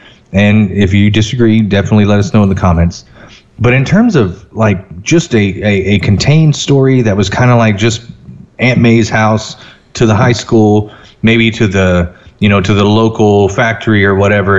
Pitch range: 100-120 Hz